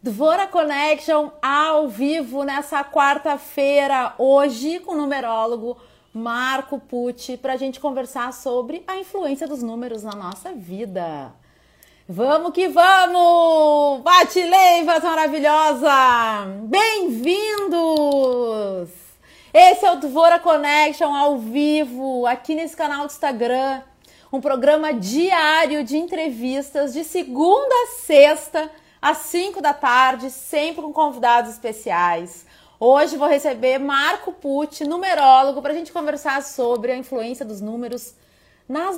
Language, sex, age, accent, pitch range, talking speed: Portuguese, female, 30-49, Brazilian, 250-320 Hz, 115 wpm